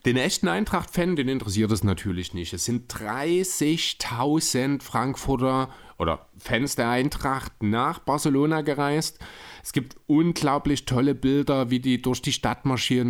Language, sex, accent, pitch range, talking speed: German, male, German, 120-150 Hz, 135 wpm